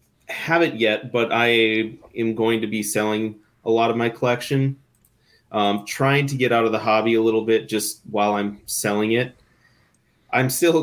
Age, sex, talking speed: 20-39, male, 175 wpm